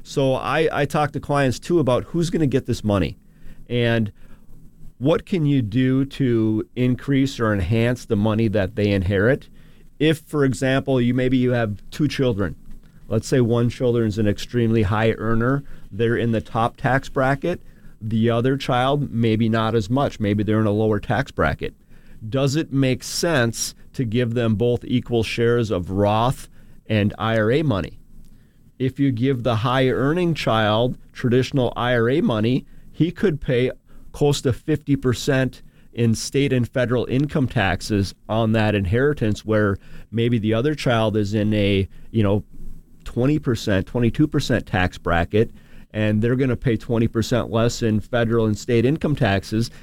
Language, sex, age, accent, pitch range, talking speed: English, male, 40-59, American, 110-135 Hz, 155 wpm